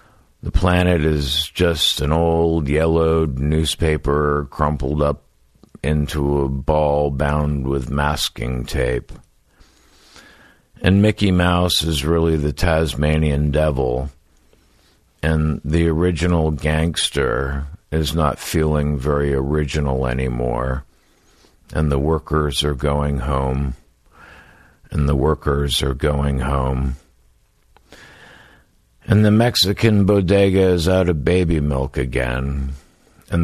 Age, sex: 50-69, male